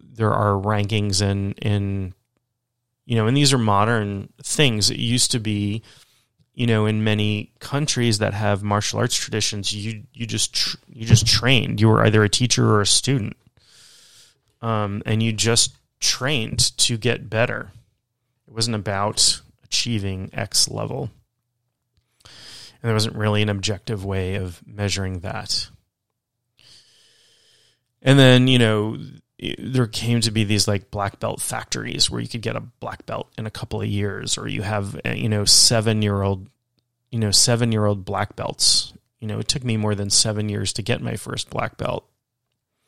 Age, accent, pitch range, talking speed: 30-49, American, 105-125 Hz, 160 wpm